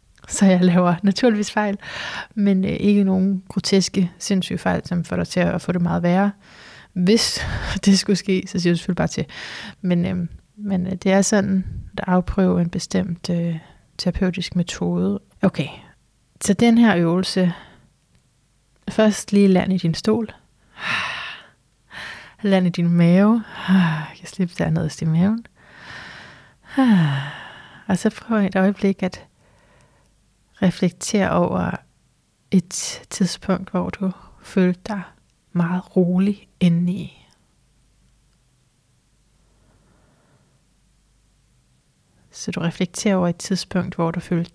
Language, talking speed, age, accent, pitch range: Danish, 125 wpm, 30-49, native, 175-200 Hz